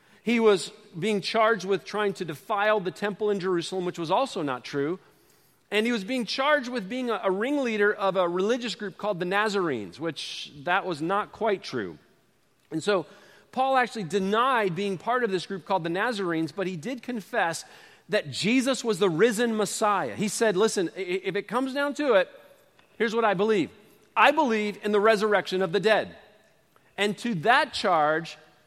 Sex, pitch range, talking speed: male, 185-230 Hz, 185 wpm